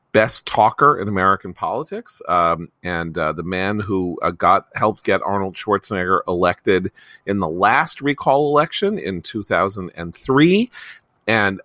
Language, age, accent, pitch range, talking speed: English, 40-59, American, 85-110 Hz, 135 wpm